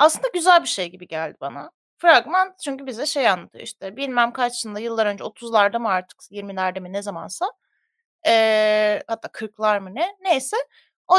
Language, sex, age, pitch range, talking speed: Turkish, female, 30-49, 225-345 Hz, 170 wpm